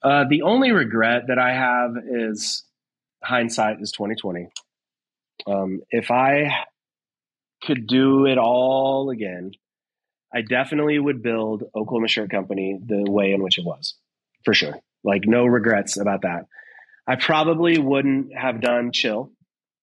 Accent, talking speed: American, 135 wpm